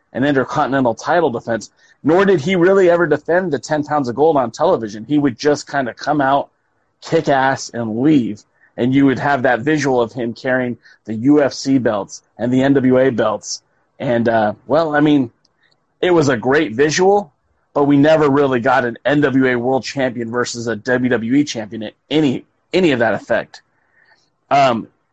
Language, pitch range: English, 120-155 Hz